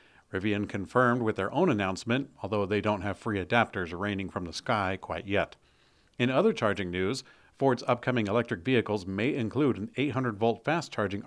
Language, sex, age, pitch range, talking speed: English, male, 50-69, 95-120 Hz, 165 wpm